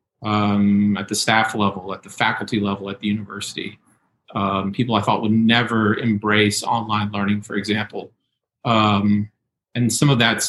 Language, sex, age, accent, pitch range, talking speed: English, male, 40-59, American, 110-130 Hz, 160 wpm